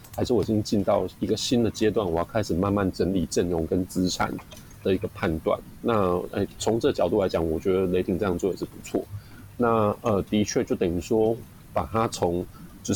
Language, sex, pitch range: Chinese, male, 90-110 Hz